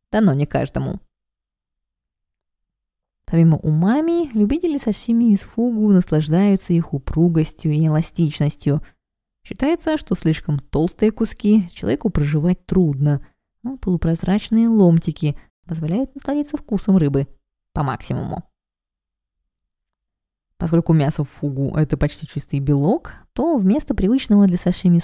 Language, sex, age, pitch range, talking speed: Russian, female, 20-39, 150-215 Hz, 110 wpm